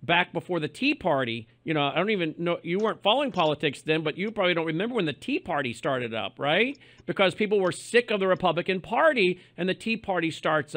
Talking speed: 230 wpm